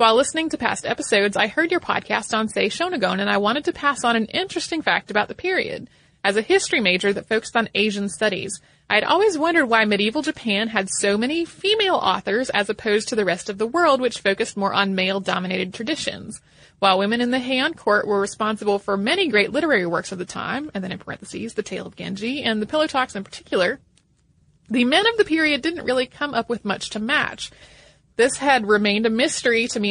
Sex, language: female, English